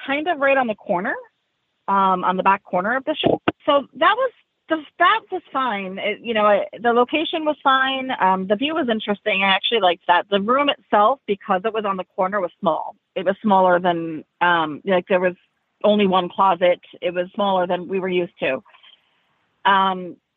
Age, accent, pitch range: 40-59, American, 185-245 Hz